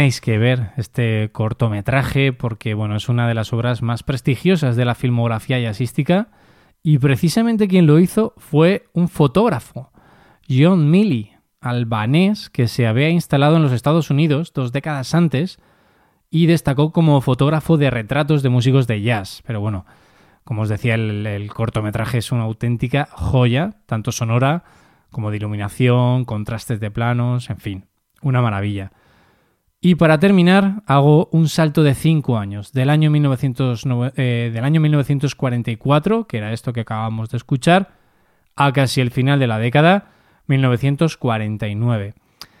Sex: male